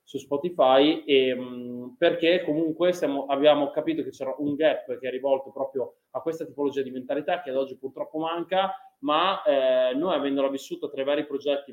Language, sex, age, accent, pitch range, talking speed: Italian, male, 20-39, native, 130-155 Hz, 180 wpm